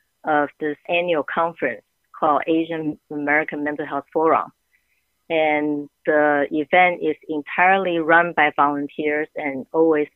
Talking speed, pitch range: 120 wpm, 145-165 Hz